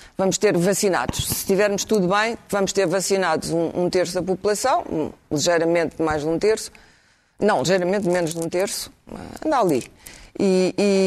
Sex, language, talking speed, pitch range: female, Portuguese, 170 wpm, 170-205 Hz